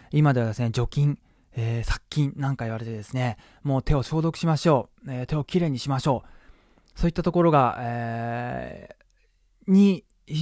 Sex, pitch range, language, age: male, 115-160 Hz, Japanese, 20-39